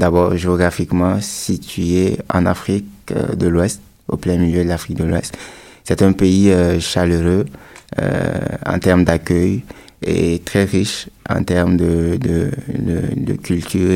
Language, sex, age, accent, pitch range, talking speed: French, male, 30-49, French, 85-95 Hz, 135 wpm